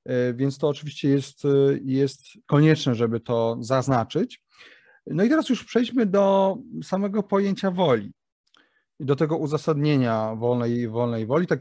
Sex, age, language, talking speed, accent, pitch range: male, 30-49, Polish, 130 wpm, native, 125-155 Hz